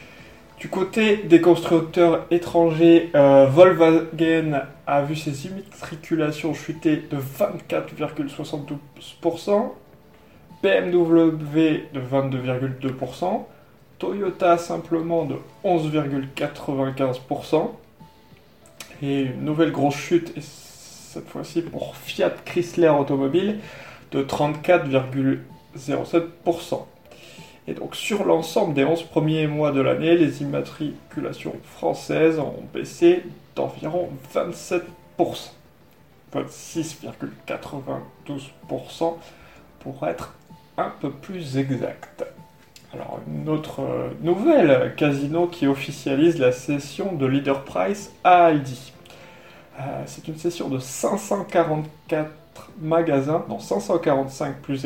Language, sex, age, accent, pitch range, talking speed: French, male, 20-39, French, 140-170 Hz, 90 wpm